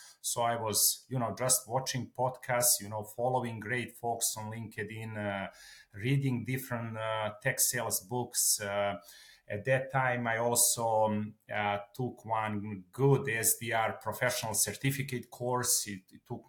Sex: male